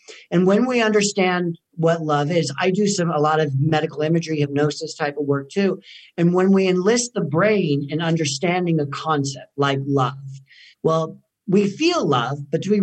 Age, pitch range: 50-69, 145-190 Hz